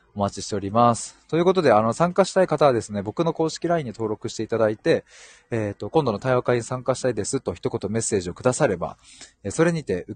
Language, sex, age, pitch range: Japanese, male, 20-39, 100-140 Hz